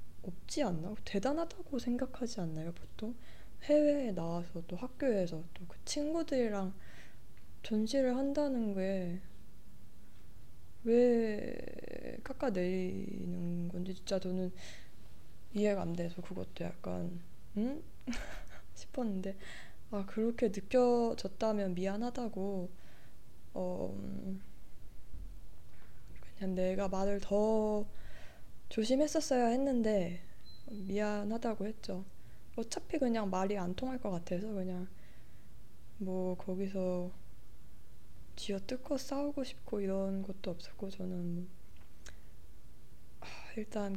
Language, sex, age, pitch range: Korean, female, 20-39, 180-235 Hz